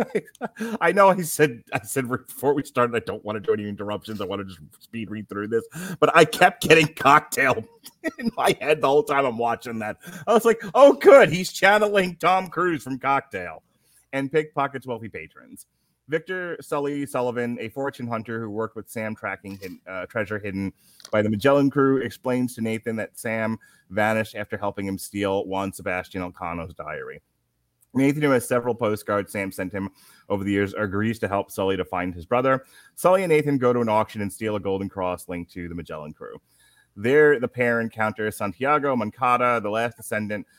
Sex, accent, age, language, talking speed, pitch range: male, American, 30-49, English, 190 wpm, 100-140 Hz